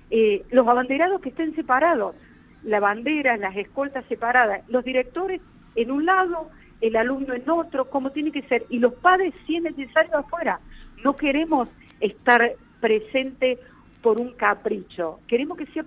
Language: Spanish